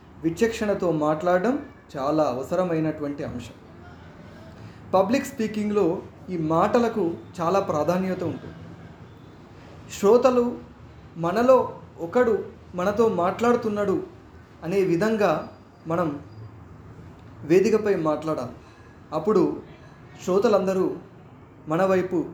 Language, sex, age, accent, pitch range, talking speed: Telugu, male, 30-49, native, 135-205 Hz, 65 wpm